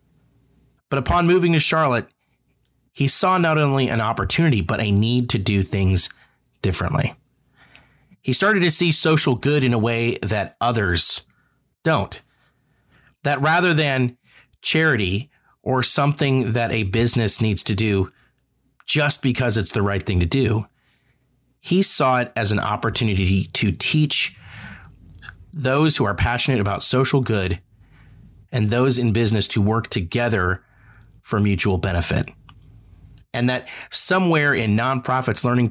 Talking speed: 135 wpm